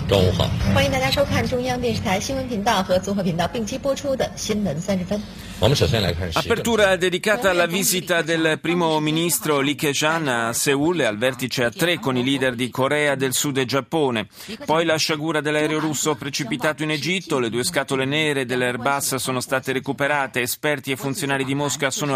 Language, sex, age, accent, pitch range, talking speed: Italian, male, 40-59, native, 125-160 Hz, 125 wpm